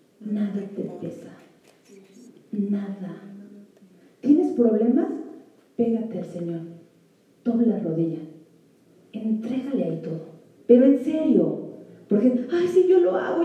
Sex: female